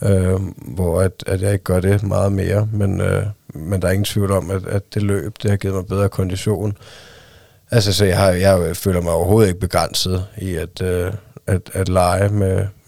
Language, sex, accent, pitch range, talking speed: Danish, male, native, 95-105 Hz, 210 wpm